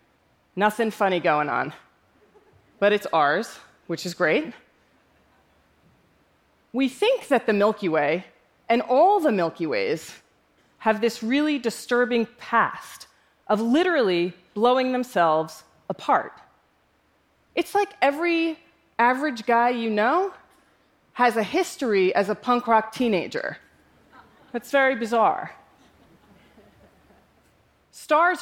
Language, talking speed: English, 105 wpm